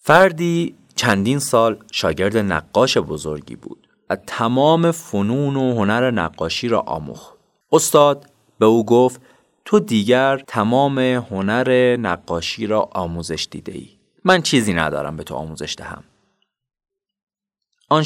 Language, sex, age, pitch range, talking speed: Persian, male, 30-49, 105-155 Hz, 120 wpm